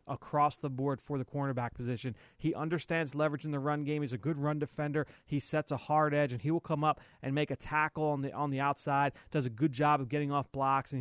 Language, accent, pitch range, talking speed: English, American, 135-155 Hz, 255 wpm